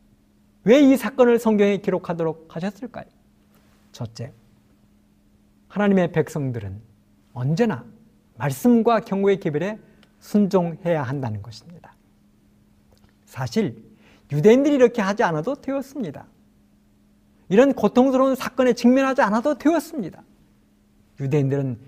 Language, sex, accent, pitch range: Korean, male, native, 145-225 Hz